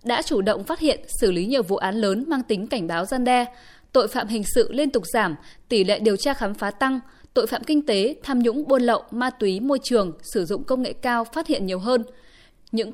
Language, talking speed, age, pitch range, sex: Vietnamese, 245 wpm, 20-39, 200-265 Hz, female